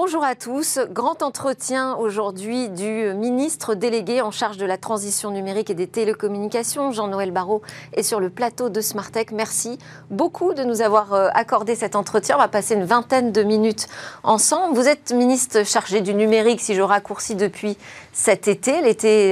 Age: 40-59